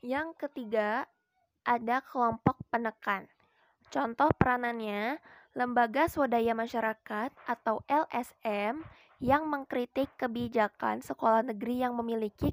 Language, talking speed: Indonesian, 90 wpm